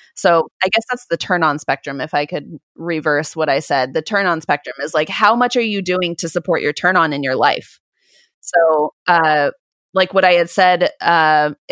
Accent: American